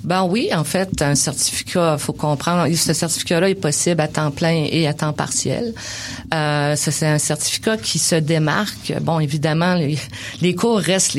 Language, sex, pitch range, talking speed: French, female, 145-170 Hz, 170 wpm